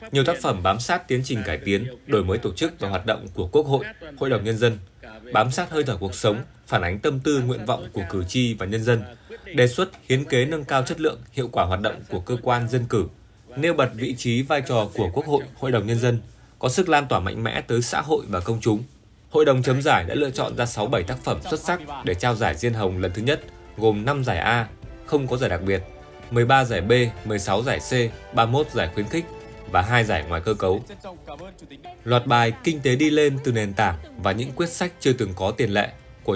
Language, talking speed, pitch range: Vietnamese, 245 wpm, 105-135 Hz